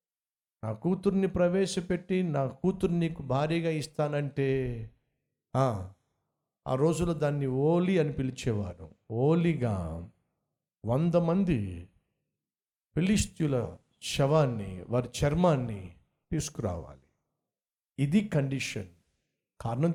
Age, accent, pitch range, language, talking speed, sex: 50-69, native, 115-175 Hz, Telugu, 75 wpm, male